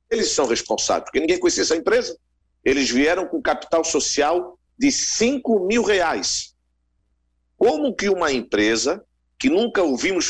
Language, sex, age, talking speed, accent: Portuguese, male, 50-69, 140 wpm, Brazilian